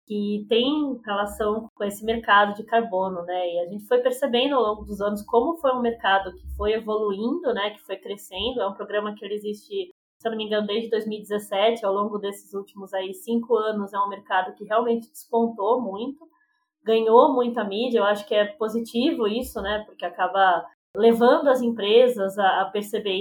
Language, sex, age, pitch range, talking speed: Portuguese, female, 20-39, 200-240 Hz, 185 wpm